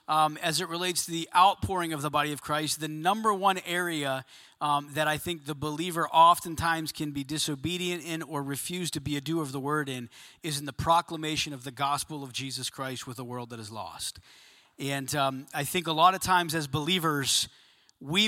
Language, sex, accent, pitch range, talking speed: English, male, American, 140-170 Hz, 210 wpm